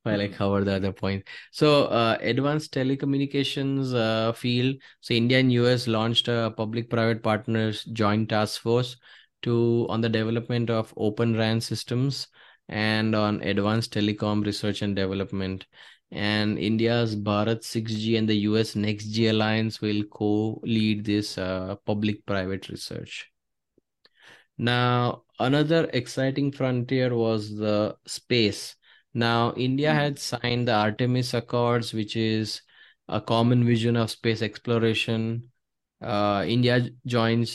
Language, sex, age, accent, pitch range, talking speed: English, male, 20-39, Indian, 105-120 Hz, 125 wpm